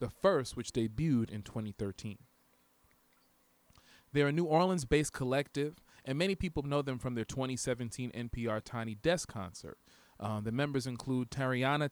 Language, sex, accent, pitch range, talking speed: English, male, American, 115-145 Hz, 140 wpm